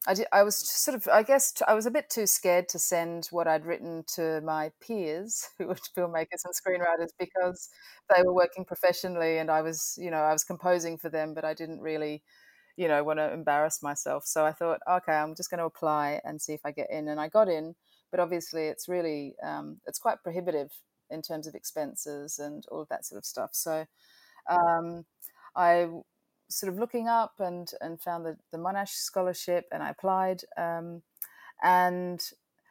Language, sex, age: English, female, 30-49